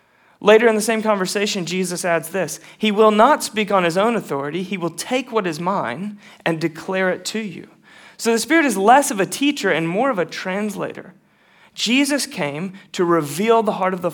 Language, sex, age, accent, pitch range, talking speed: English, male, 30-49, American, 165-215 Hz, 205 wpm